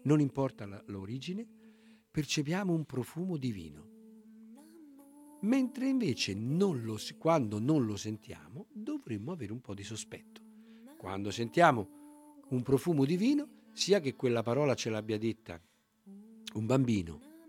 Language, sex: Italian, male